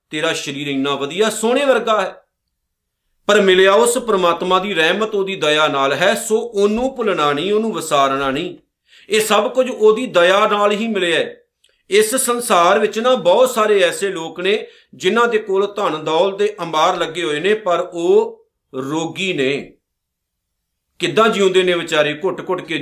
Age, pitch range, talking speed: 50-69, 165-215 Hz, 165 wpm